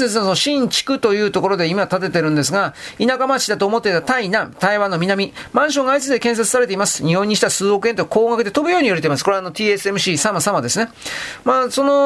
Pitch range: 195-255 Hz